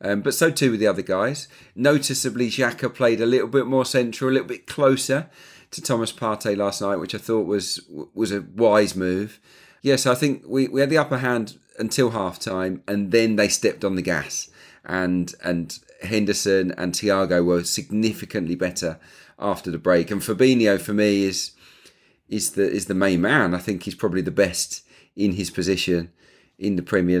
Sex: male